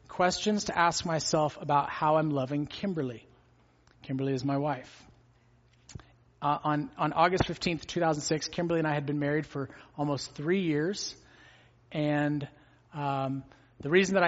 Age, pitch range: 30-49, 145-175 Hz